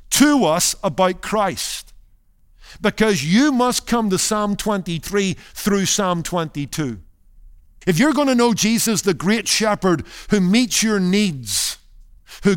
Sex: male